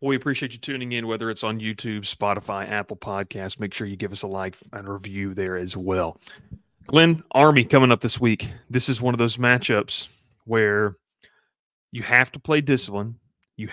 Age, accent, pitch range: 30-49, American, 105-130 Hz